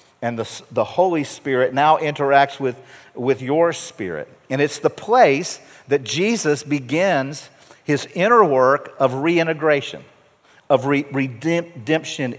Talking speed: 125 wpm